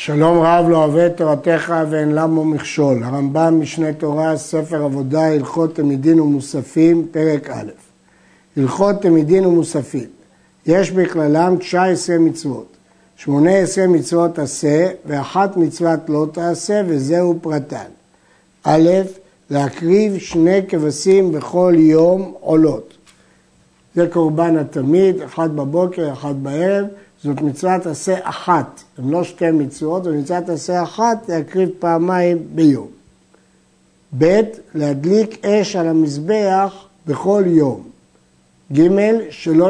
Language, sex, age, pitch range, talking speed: Hebrew, male, 60-79, 150-185 Hz, 110 wpm